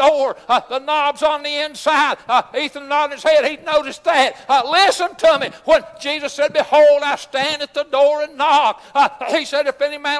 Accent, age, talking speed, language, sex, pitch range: American, 60-79, 220 wpm, English, male, 275-300 Hz